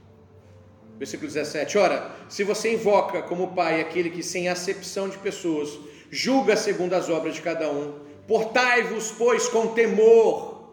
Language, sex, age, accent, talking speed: Portuguese, male, 40-59, Brazilian, 140 wpm